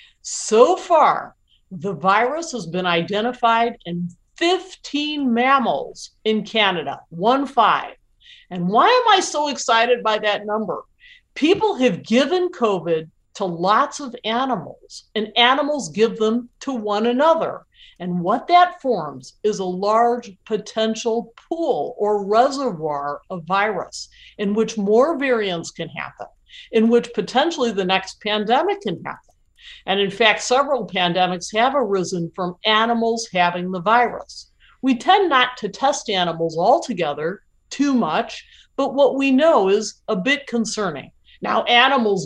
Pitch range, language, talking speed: 185-270 Hz, English, 135 wpm